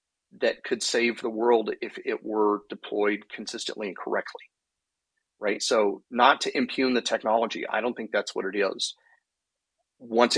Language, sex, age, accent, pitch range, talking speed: English, male, 40-59, American, 100-125 Hz, 155 wpm